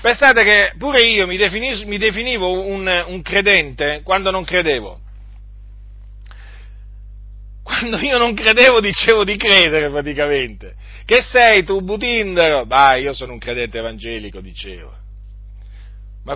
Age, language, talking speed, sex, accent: 40-59, Italian, 120 wpm, male, native